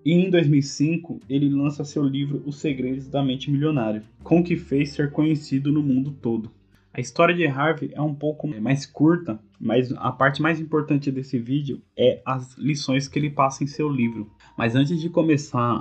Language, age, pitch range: Portuguese, 10-29, 120-145 Hz